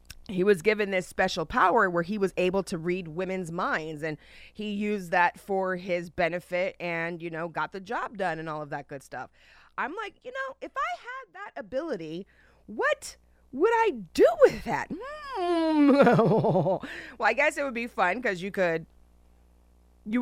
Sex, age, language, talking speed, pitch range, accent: female, 30-49, English, 180 wpm, 180-265 Hz, American